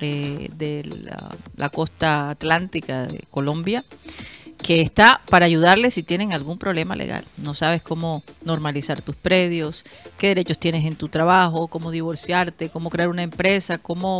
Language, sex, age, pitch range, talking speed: Spanish, female, 40-59, 155-200 Hz, 150 wpm